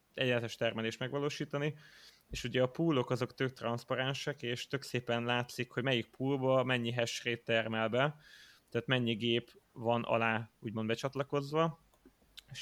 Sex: male